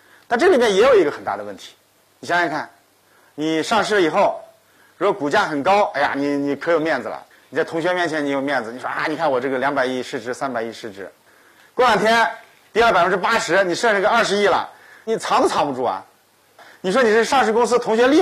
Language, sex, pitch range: Chinese, male, 160-240 Hz